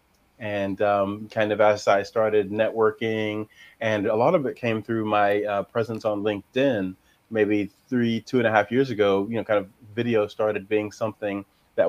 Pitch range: 105-125 Hz